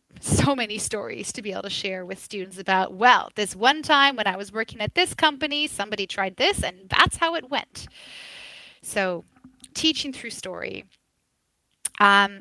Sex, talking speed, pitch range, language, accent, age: female, 170 wpm, 200-255 Hz, English, American, 20-39